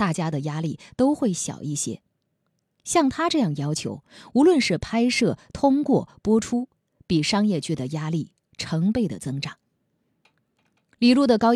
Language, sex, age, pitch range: Chinese, female, 20-39, 145-225 Hz